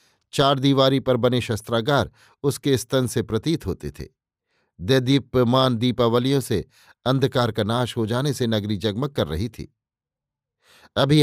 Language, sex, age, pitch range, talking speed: Hindi, male, 50-69, 120-140 Hz, 135 wpm